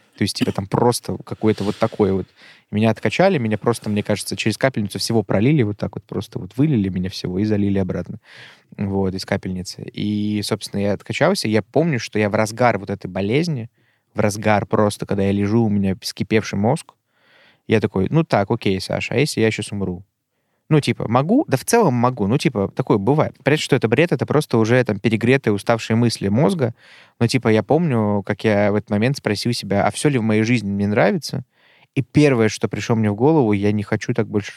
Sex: male